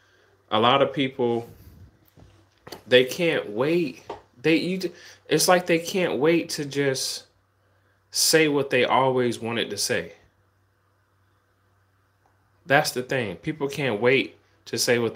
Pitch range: 100-125 Hz